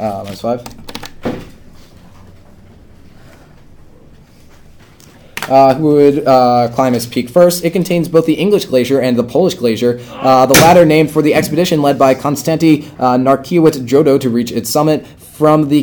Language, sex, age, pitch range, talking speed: English, male, 20-39, 120-155 Hz, 150 wpm